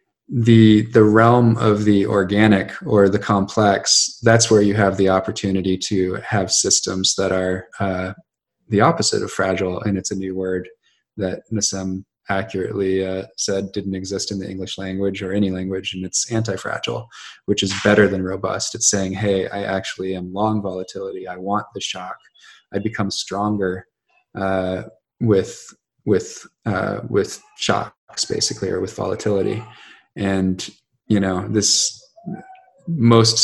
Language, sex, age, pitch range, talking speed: English, male, 20-39, 95-110 Hz, 145 wpm